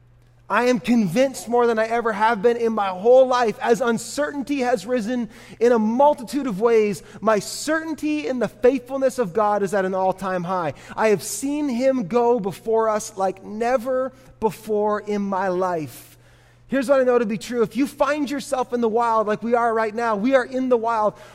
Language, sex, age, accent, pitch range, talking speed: English, male, 30-49, American, 195-255 Hz, 200 wpm